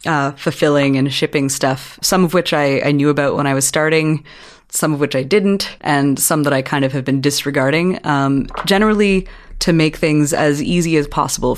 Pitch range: 135-160 Hz